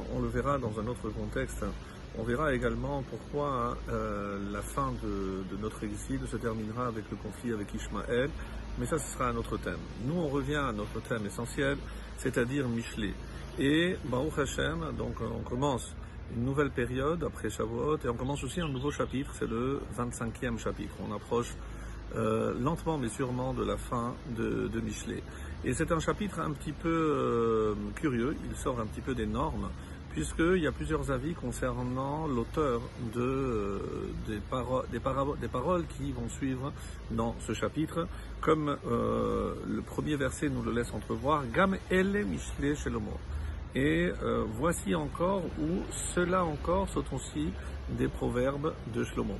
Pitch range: 110-140 Hz